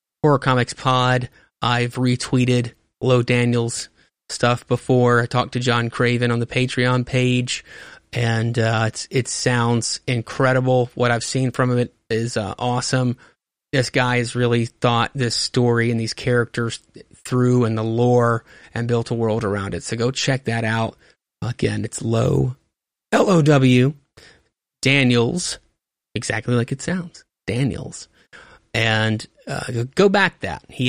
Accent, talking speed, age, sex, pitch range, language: American, 140 wpm, 30-49, male, 115-130 Hz, English